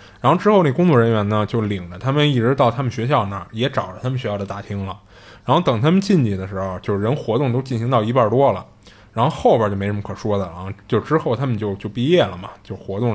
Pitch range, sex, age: 100-140 Hz, male, 20-39